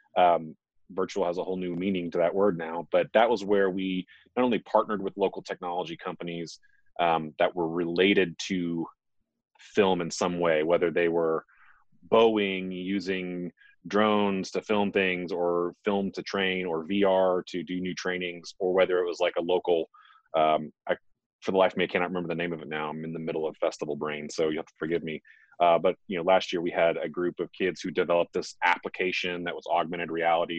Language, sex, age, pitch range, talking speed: English, male, 30-49, 80-95 Hz, 205 wpm